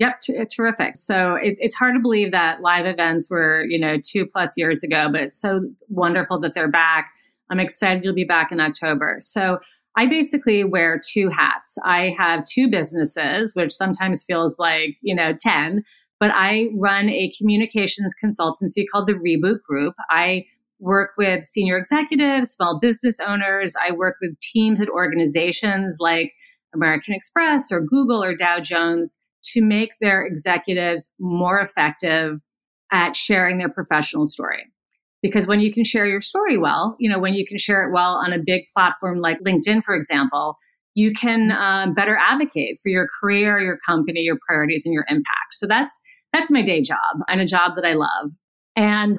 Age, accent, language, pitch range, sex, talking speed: 30-49, American, English, 170-210 Hz, female, 175 wpm